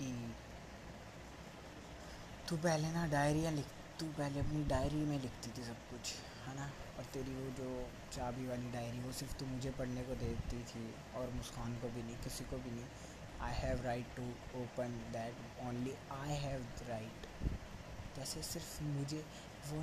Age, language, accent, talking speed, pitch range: 20-39, Hindi, native, 160 wpm, 125-145 Hz